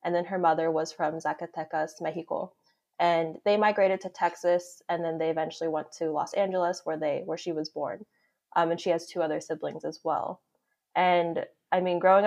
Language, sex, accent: English, female, American